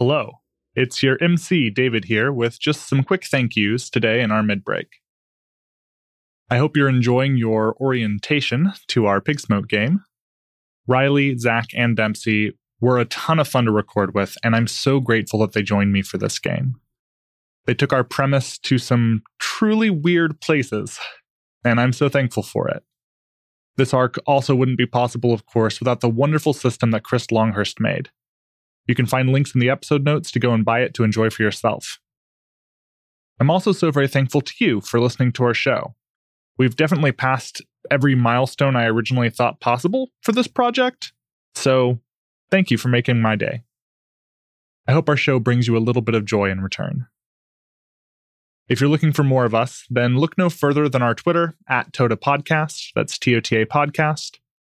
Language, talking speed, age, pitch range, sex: English, 175 wpm, 20-39, 115-145 Hz, male